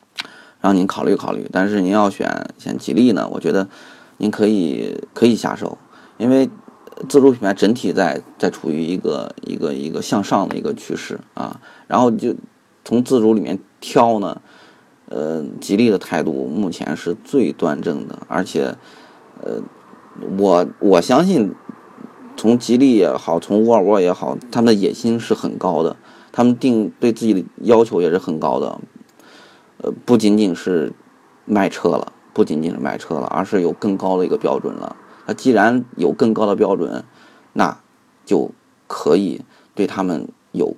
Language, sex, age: Chinese, male, 30-49